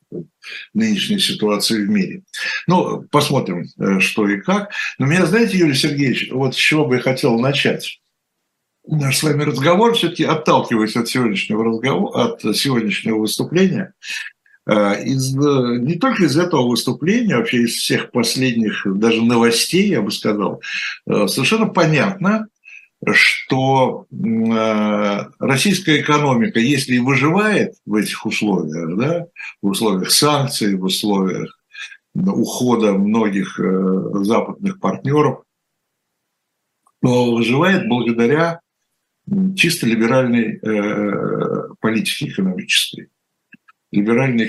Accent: native